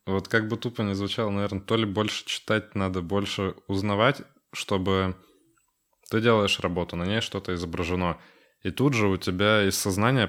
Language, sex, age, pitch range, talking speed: Russian, male, 20-39, 95-105 Hz, 170 wpm